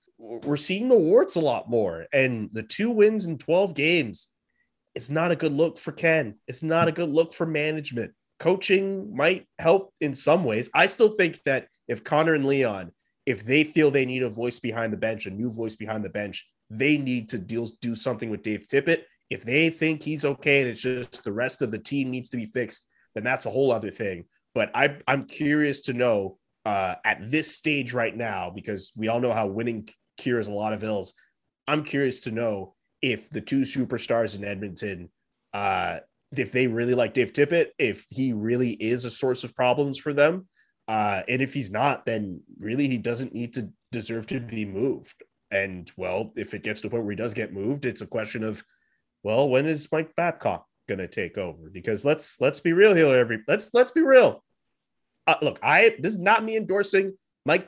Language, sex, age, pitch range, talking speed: English, male, 30-49, 115-160 Hz, 210 wpm